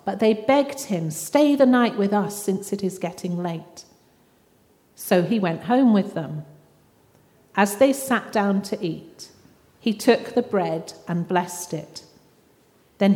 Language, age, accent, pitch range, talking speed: English, 40-59, British, 180-230 Hz, 155 wpm